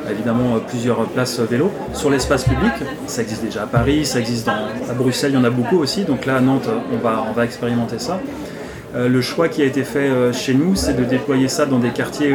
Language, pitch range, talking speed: French, 120-145 Hz, 245 wpm